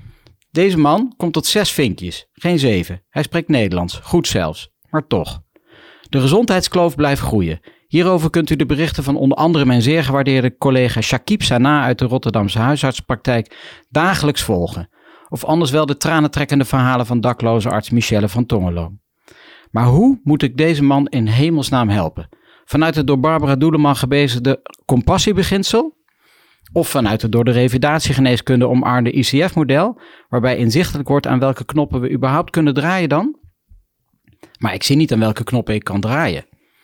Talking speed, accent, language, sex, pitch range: 155 wpm, Dutch, Dutch, male, 115-160 Hz